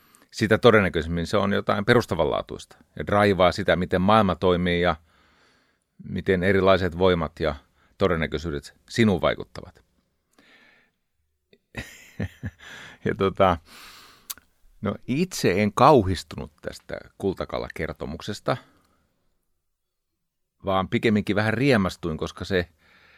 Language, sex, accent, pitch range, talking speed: Finnish, male, native, 85-105 Hz, 80 wpm